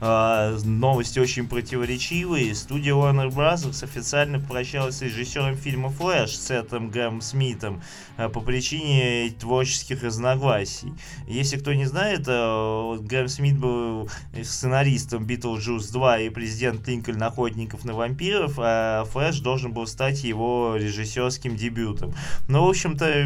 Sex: male